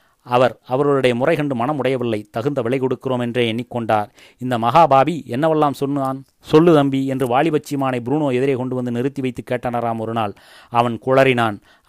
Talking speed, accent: 145 wpm, native